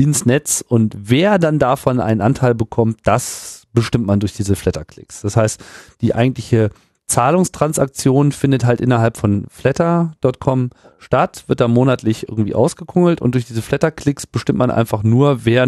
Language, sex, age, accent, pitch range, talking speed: German, male, 40-59, German, 90-125 Hz, 155 wpm